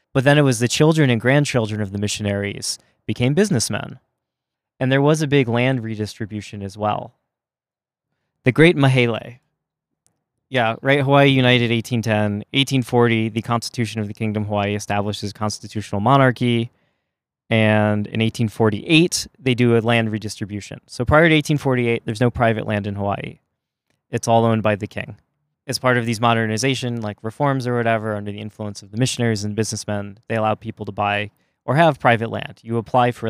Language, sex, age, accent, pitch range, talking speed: English, male, 20-39, American, 105-125 Hz, 170 wpm